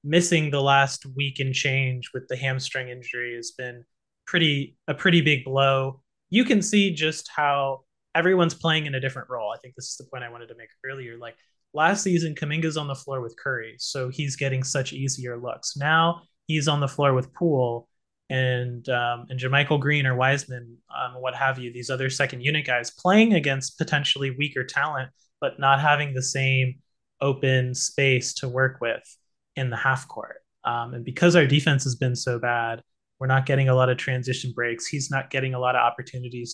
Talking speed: 195 wpm